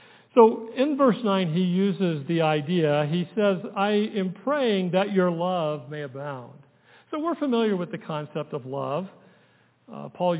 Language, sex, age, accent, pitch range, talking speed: English, male, 50-69, American, 165-220 Hz, 160 wpm